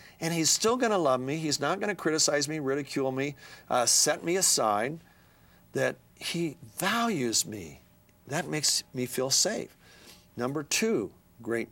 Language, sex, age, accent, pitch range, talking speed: English, male, 50-69, American, 105-135 Hz, 160 wpm